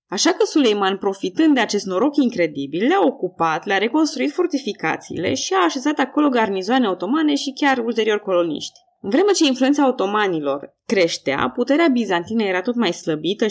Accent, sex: native, female